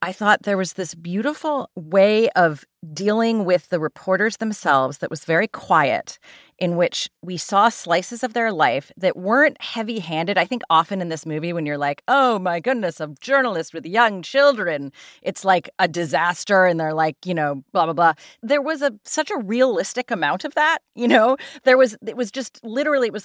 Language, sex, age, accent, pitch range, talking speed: English, female, 30-49, American, 165-215 Hz, 200 wpm